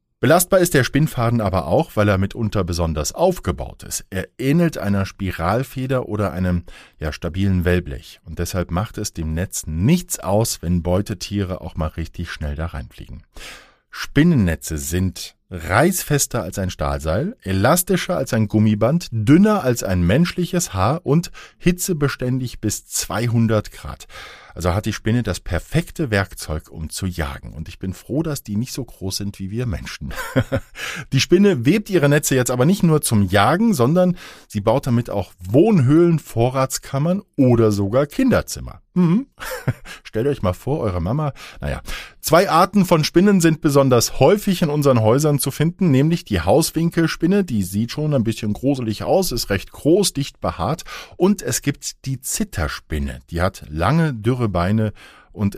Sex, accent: male, German